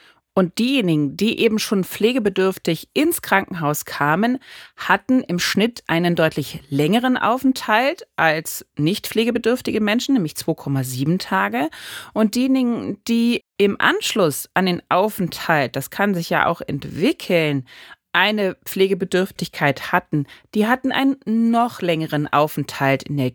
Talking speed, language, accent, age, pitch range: 125 wpm, German, German, 40-59, 155-230 Hz